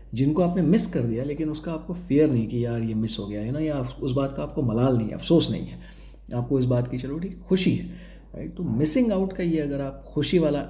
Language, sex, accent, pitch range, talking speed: Hindi, male, native, 110-140 Hz, 265 wpm